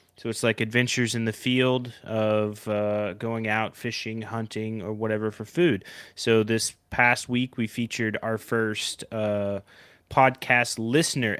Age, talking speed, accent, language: 30-49, 145 wpm, American, English